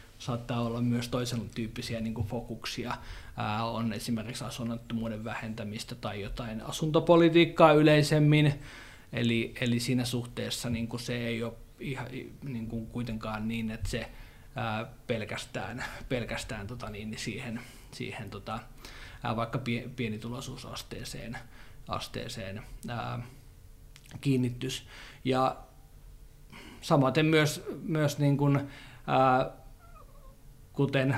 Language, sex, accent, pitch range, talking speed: Finnish, male, native, 115-130 Hz, 105 wpm